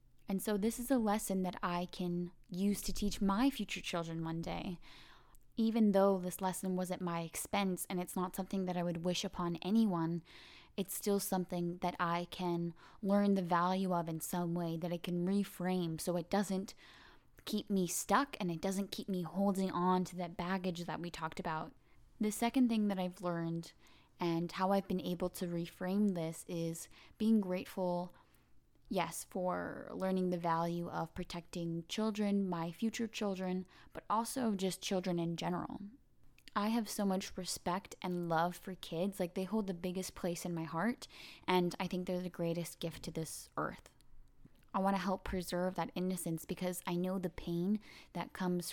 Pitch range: 175-195 Hz